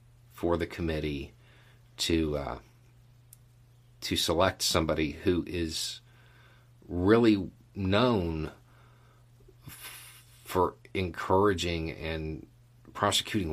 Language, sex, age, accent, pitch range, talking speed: English, male, 50-69, American, 80-120 Hz, 75 wpm